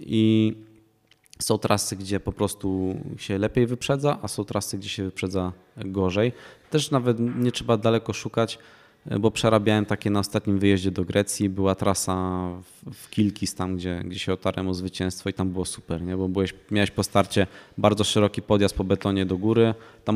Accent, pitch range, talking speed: native, 95-110 Hz, 170 wpm